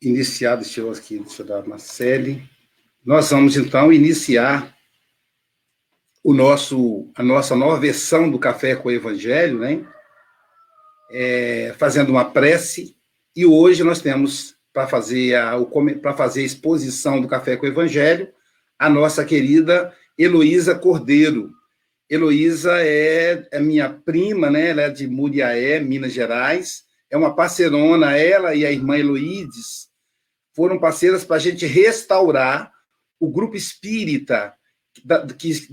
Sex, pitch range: male, 145-220 Hz